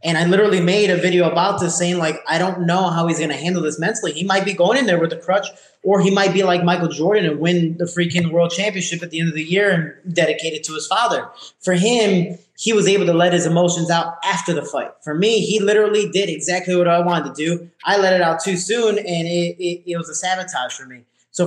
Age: 20-39